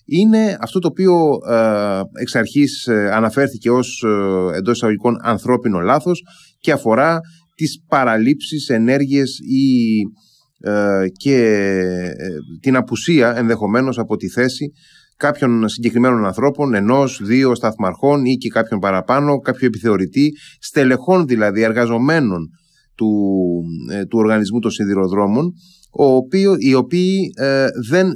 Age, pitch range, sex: 30-49, 105-140 Hz, male